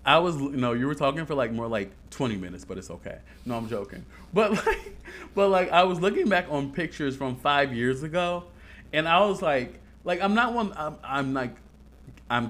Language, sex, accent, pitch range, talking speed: English, male, American, 120-175 Hz, 210 wpm